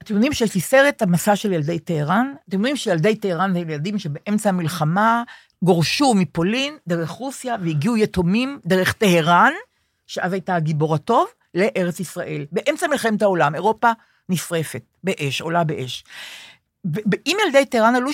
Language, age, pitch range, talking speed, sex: Hebrew, 50-69, 170-235 Hz, 135 wpm, female